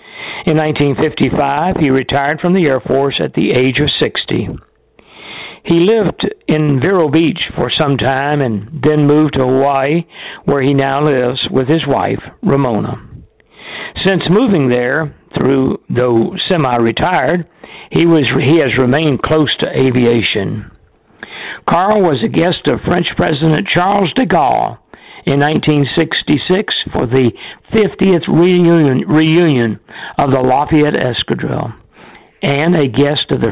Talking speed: 130 wpm